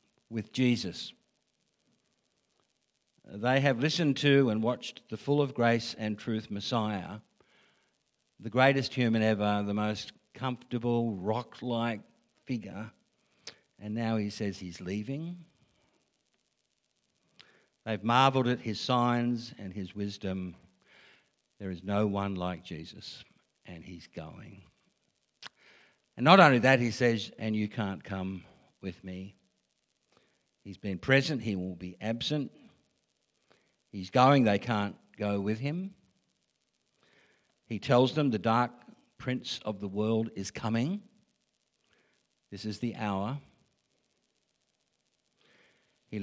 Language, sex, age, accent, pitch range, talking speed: English, male, 60-79, Australian, 100-125 Hz, 115 wpm